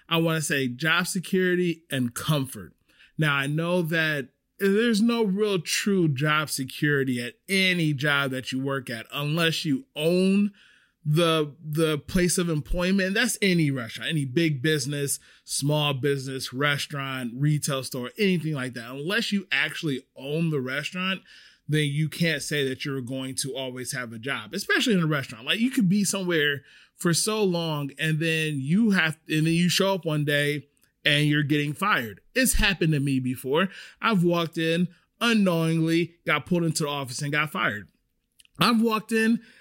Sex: male